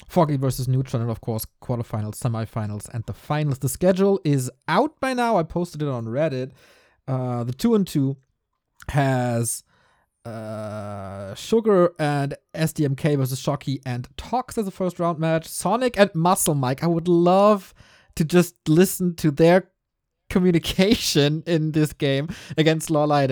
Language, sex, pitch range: English, male, 120-175 Hz